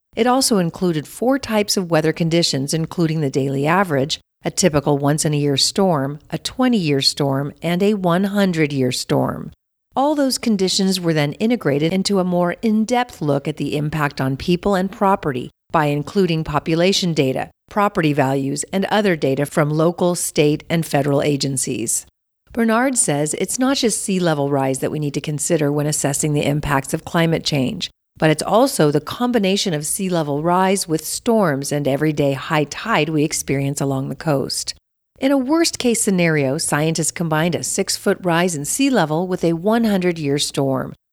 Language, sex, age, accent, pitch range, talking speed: English, female, 50-69, American, 145-195 Hz, 160 wpm